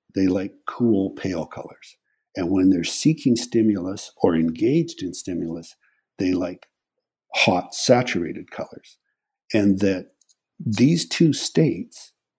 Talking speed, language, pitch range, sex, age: 115 wpm, English, 90-115 Hz, male, 60-79